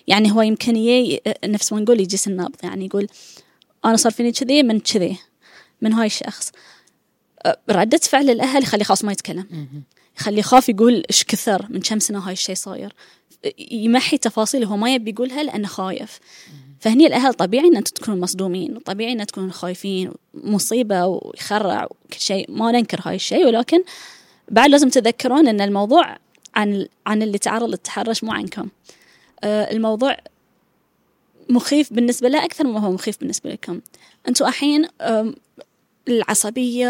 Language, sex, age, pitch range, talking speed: Arabic, female, 20-39, 210-270 Hz, 145 wpm